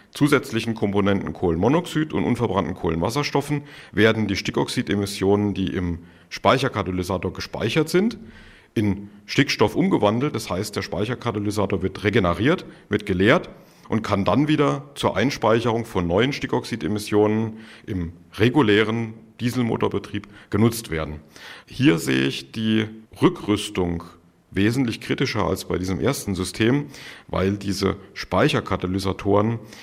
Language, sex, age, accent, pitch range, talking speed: German, male, 50-69, German, 90-115 Hz, 110 wpm